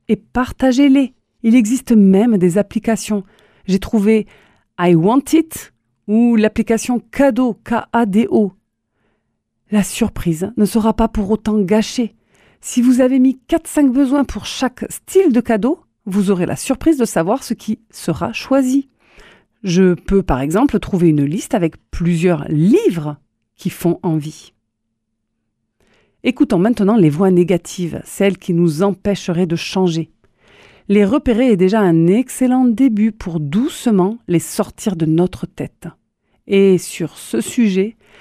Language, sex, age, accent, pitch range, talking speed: French, female, 40-59, French, 180-235 Hz, 140 wpm